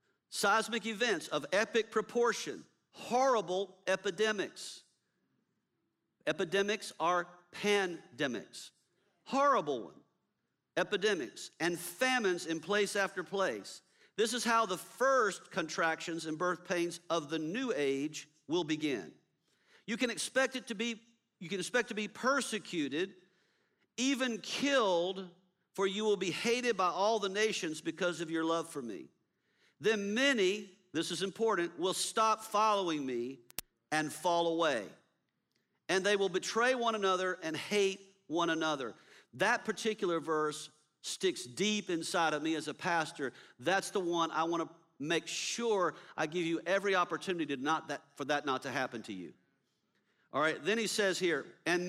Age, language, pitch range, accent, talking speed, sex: 50-69, English, 165-220 Hz, American, 145 wpm, male